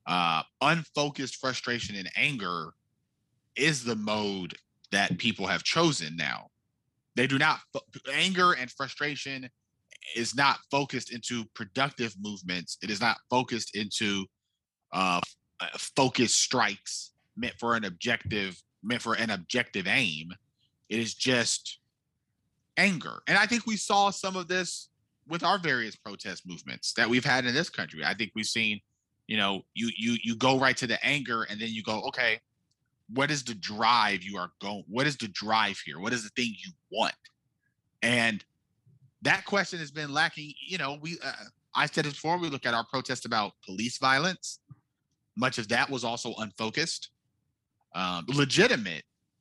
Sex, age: male, 30-49